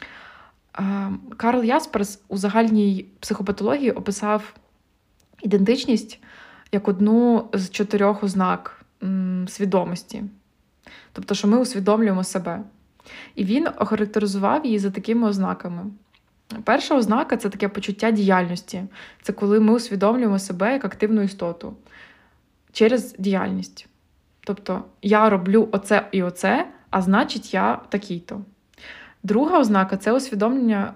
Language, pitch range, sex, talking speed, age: Ukrainian, 195-225 Hz, female, 110 wpm, 20-39